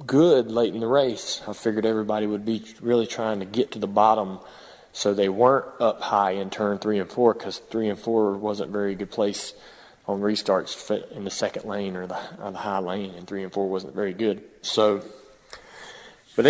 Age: 30-49